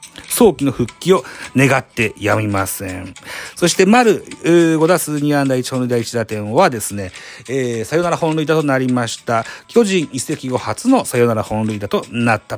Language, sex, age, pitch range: Japanese, male, 40-59, 115-170 Hz